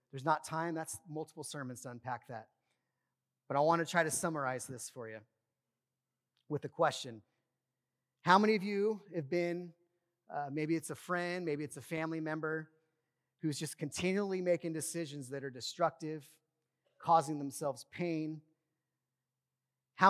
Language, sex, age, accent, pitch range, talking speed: English, male, 30-49, American, 130-175 Hz, 150 wpm